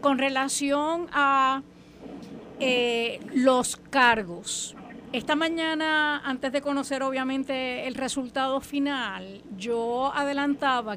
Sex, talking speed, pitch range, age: female, 95 wpm, 235-295 Hz, 40-59